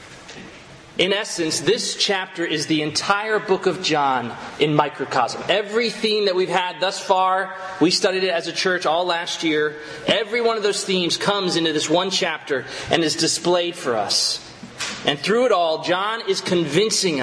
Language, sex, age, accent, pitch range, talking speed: English, male, 30-49, American, 160-200 Hz, 175 wpm